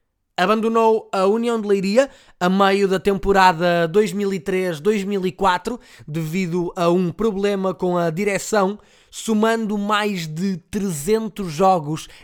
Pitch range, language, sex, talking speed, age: 170-200 Hz, Portuguese, male, 110 wpm, 20-39